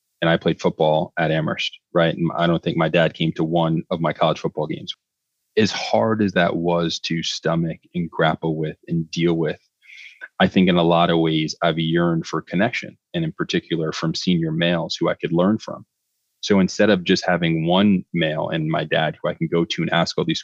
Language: English